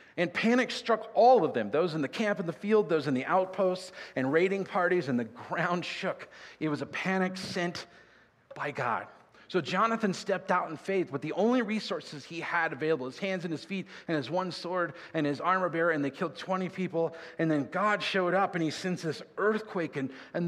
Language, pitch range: English, 145-195 Hz